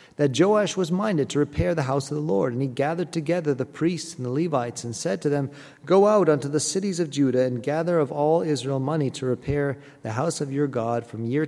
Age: 40-59